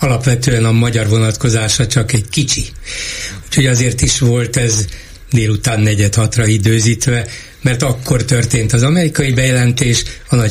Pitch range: 115-140 Hz